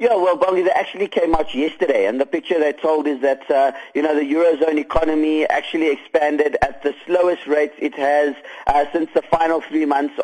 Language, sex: English, male